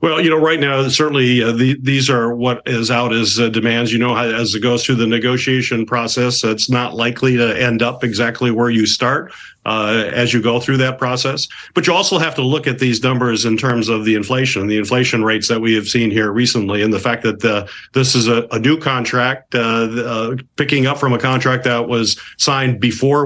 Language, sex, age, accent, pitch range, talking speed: English, male, 50-69, American, 115-130 Hz, 225 wpm